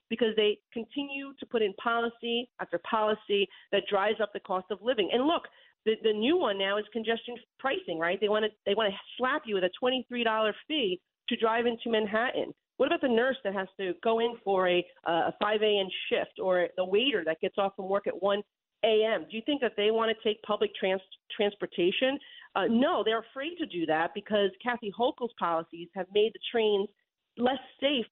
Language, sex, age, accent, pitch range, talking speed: English, female, 40-59, American, 190-235 Hz, 195 wpm